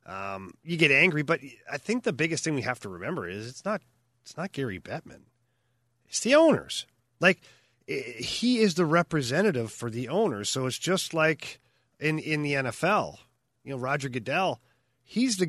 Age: 30-49